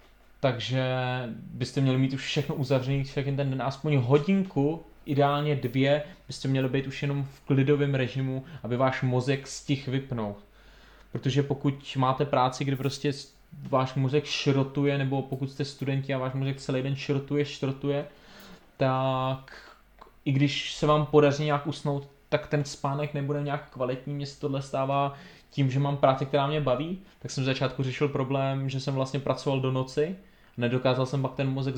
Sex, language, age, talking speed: male, Czech, 20-39, 170 wpm